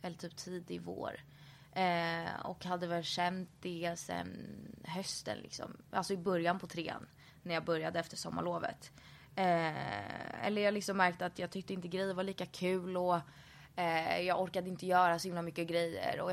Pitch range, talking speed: 160-180 Hz, 175 wpm